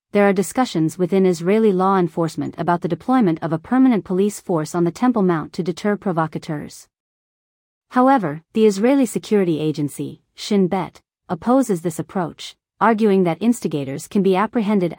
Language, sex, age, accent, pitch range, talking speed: English, female, 40-59, American, 170-210 Hz, 150 wpm